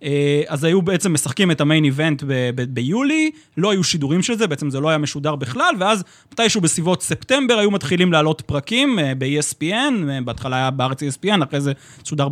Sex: male